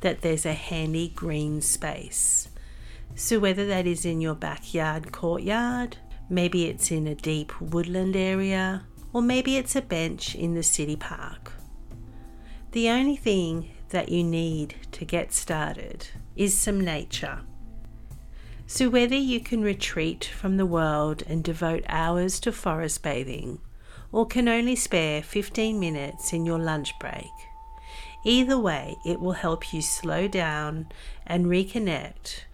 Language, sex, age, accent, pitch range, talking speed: English, female, 50-69, Australian, 150-200 Hz, 140 wpm